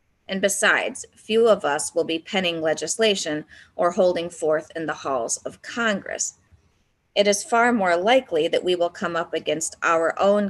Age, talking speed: 30-49, 170 wpm